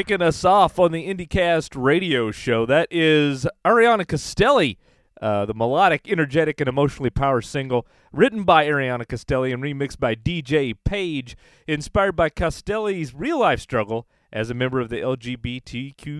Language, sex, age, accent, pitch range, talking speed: English, male, 40-59, American, 125-180 Hz, 150 wpm